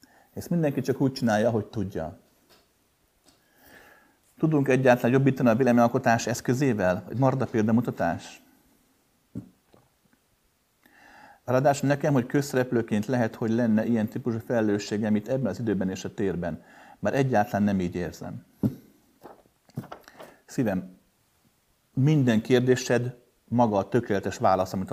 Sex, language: male, Hungarian